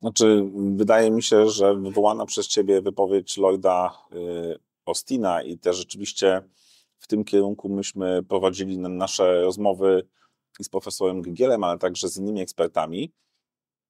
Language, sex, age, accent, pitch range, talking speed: Polish, male, 30-49, native, 90-105 Hz, 130 wpm